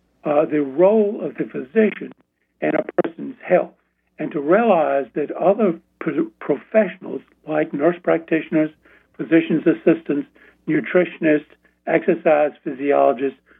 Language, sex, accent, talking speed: English, male, American, 105 wpm